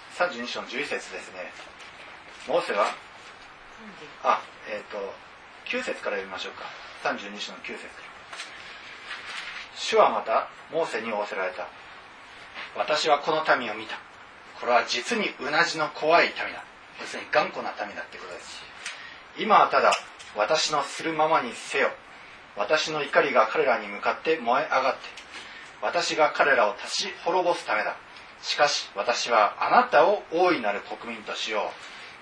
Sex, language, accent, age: male, Japanese, native, 40-59